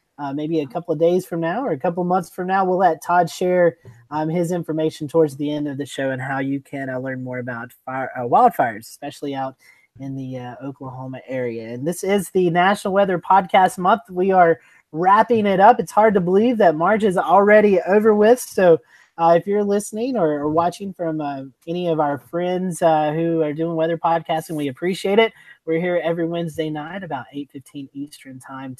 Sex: male